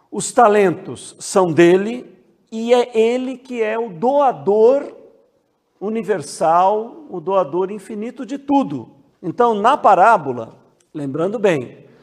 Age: 50-69